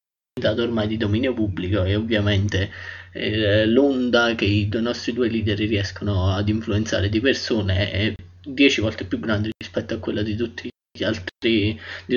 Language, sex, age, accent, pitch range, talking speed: Italian, male, 20-39, native, 95-115 Hz, 160 wpm